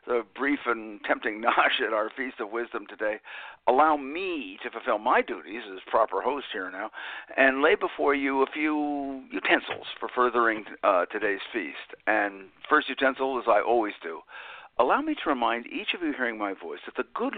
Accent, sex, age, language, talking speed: American, male, 60-79, English, 185 wpm